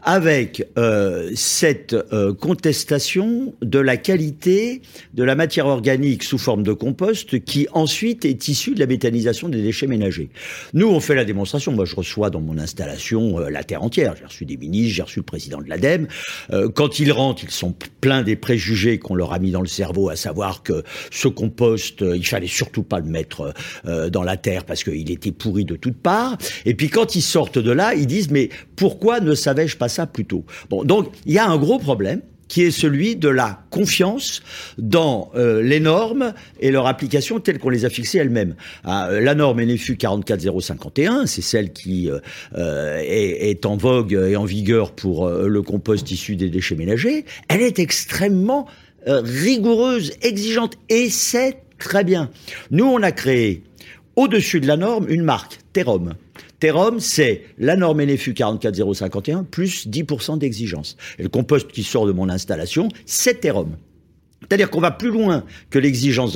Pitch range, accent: 100-170 Hz, French